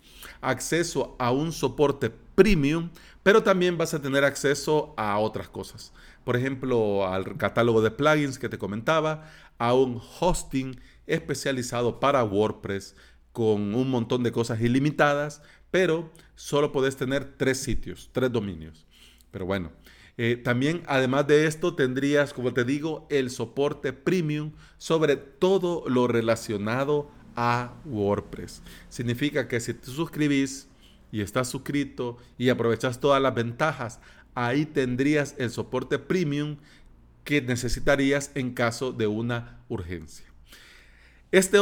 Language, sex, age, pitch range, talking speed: Spanish, male, 40-59, 115-150 Hz, 130 wpm